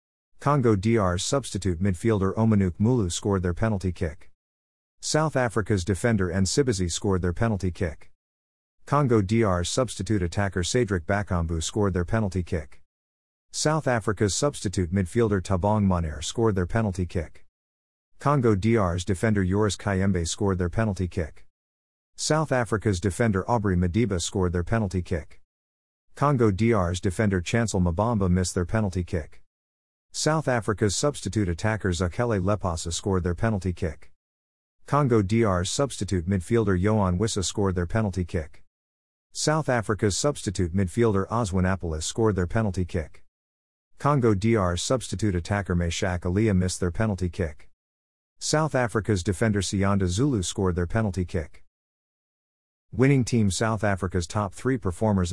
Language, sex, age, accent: English, male, 50-69, American